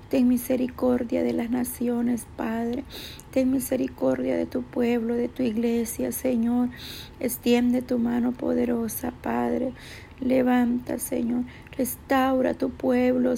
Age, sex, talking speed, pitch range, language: 40-59, female, 110 wpm, 235-255 Hz, Spanish